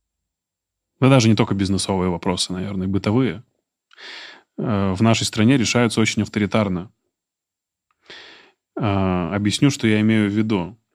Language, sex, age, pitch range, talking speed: Russian, male, 20-39, 95-115 Hz, 120 wpm